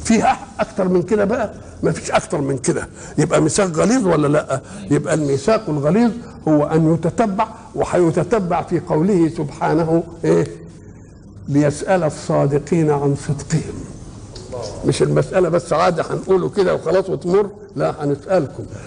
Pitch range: 145-195 Hz